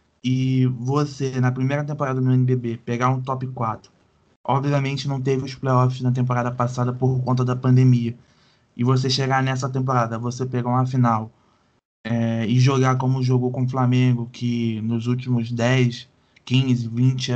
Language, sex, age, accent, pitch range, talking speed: Portuguese, male, 20-39, Brazilian, 120-135 Hz, 160 wpm